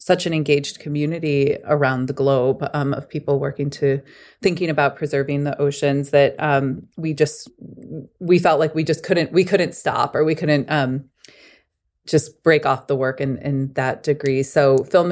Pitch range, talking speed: 140-155 Hz, 180 wpm